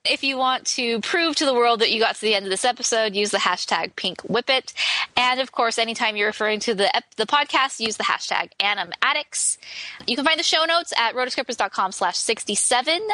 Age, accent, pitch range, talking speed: 20-39, American, 205-270 Hz, 220 wpm